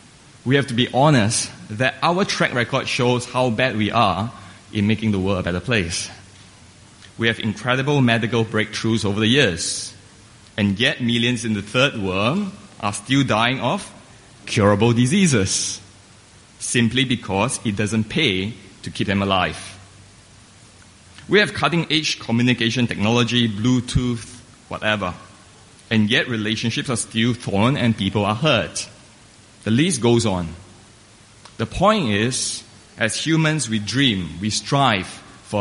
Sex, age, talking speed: male, 20-39, 140 wpm